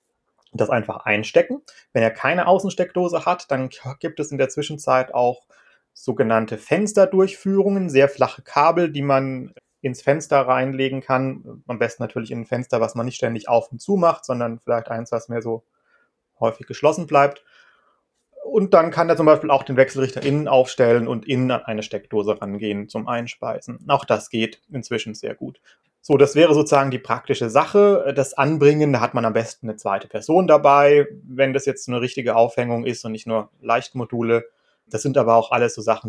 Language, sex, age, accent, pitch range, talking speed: German, male, 30-49, German, 115-160 Hz, 185 wpm